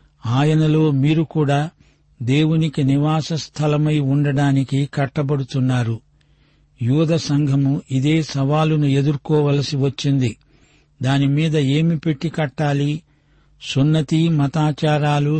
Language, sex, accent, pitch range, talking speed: Telugu, male, native, 135-150 Hz, 80 wpm